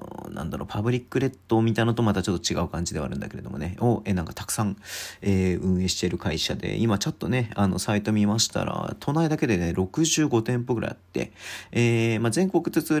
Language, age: Japanese, 40-59